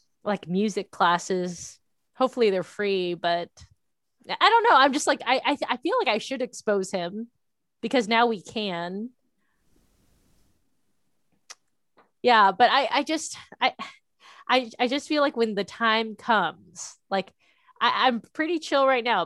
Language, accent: English, American